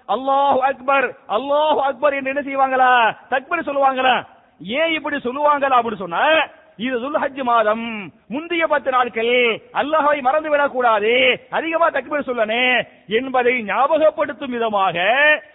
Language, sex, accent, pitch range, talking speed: English, male, Indian, 230-280 Hz, 95 wpm